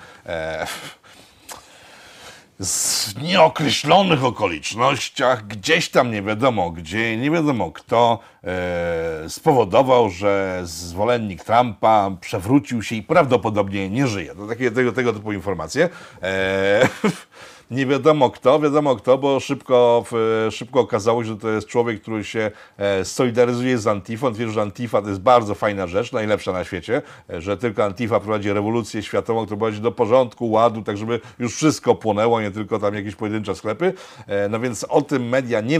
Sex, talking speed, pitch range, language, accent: male, 140 wpm, 110-155 Hz, Polish, native